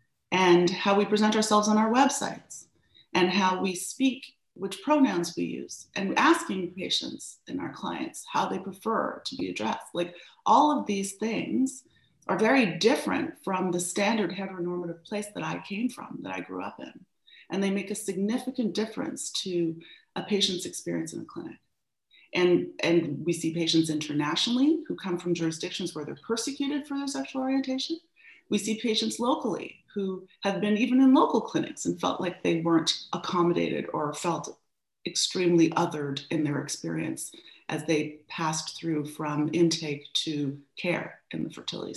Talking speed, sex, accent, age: 165 wpm, female, American, 30-49